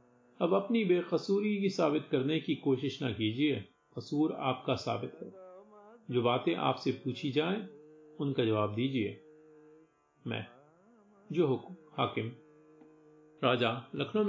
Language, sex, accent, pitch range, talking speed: Hindi, male, native, 120-155 Hz, 115 wpm